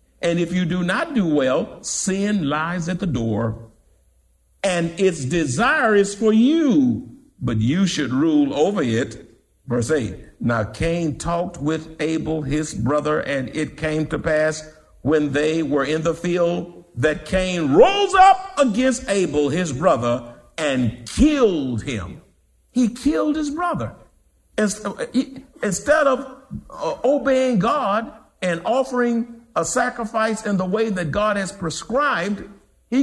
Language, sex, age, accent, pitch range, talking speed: English, male, 50-69, American, 155-250 Hz, 135 wpm